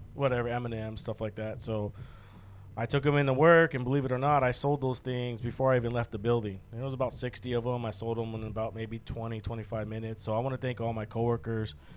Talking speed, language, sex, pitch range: 250 wpm, English, male, 110-125 Hz